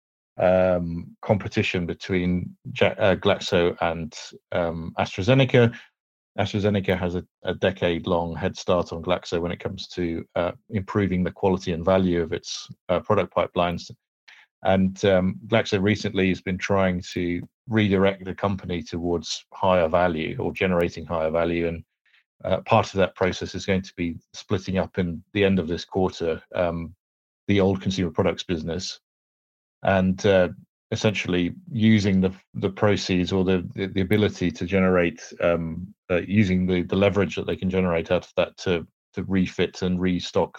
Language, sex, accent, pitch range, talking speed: English, male, British, 85-100 Hz, 155 wpm